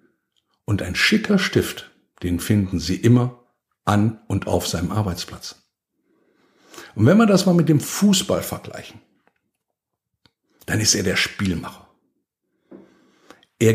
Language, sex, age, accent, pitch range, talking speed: German, male, 60-79, German, 95-155 Hz, 120 wpm